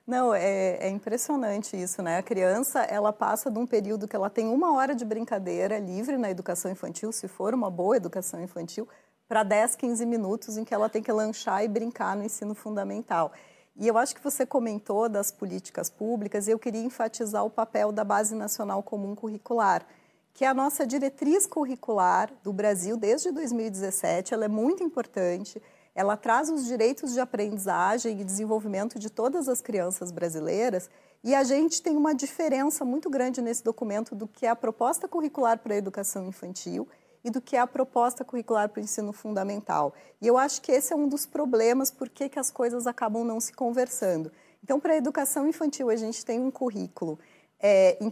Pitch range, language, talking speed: 210-255 Hz, Portuguese, 190 wpm